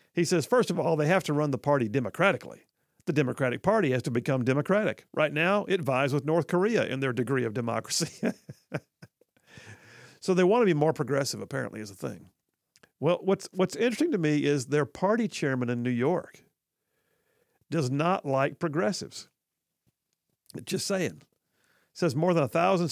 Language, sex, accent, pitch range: English, male, American, 135-180 Hz